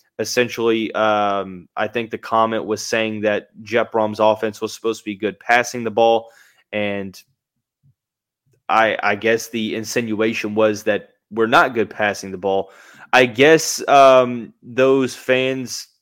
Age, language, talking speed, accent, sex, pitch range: 20-39, English, 145 wpm, American, male, 110-140 Hz